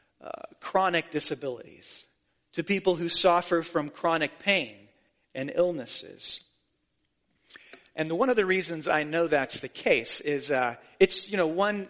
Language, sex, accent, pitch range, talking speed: English, male, American, 160-210 Hz, 140 wpm